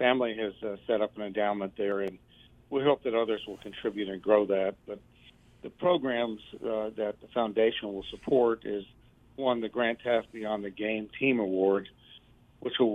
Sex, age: male, 60-79